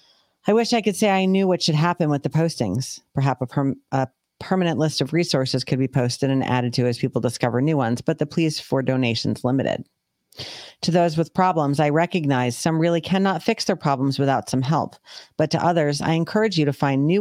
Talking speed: 215 wpm